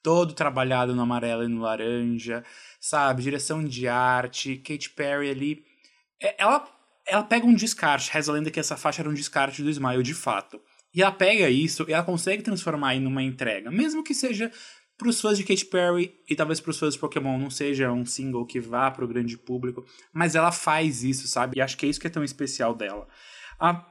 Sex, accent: male, Brazilian